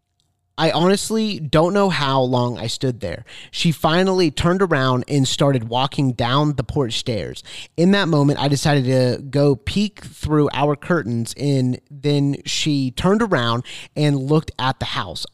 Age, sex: 30-49, male